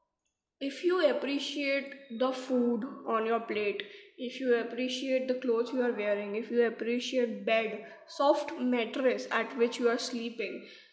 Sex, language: female, Hindi